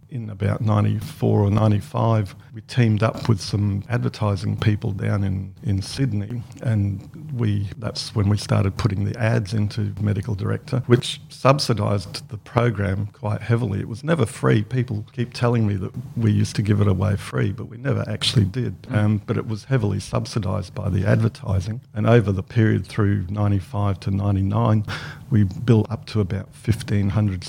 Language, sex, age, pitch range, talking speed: English, male, 50-69, 100-120 Hz, 170 wpm